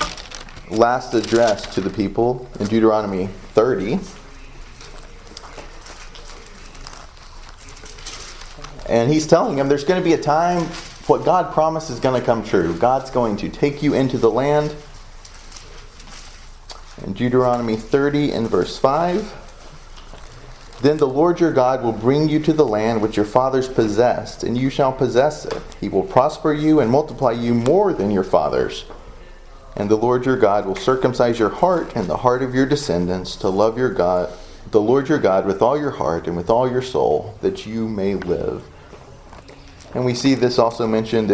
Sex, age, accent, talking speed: male, 30-49, American, 165 wpm